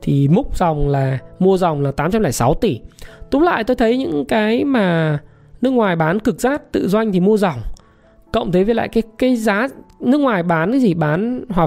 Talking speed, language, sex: 205 wpm, Vietnamese, male